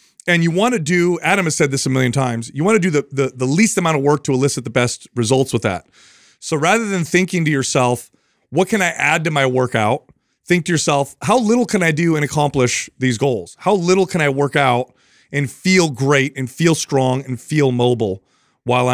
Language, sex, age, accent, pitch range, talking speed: English, male, 30-49, American, 125-165 Hz, 225 wpm